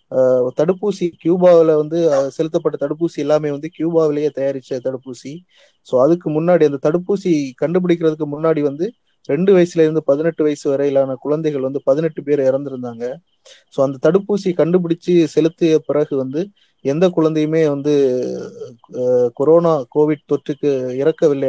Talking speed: 125 wpm